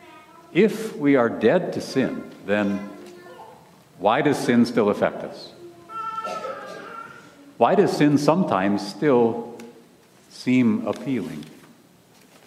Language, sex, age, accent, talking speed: English, male, 50-69, American, 95 wpm